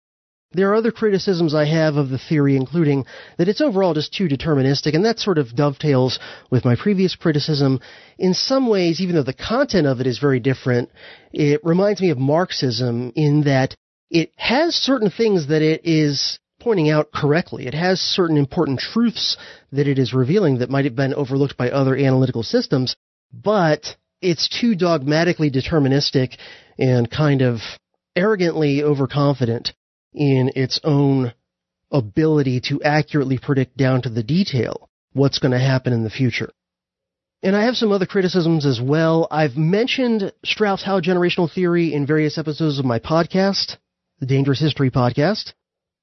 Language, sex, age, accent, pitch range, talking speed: English, male, 30-49, American, 135-180 Hz, 160 wpm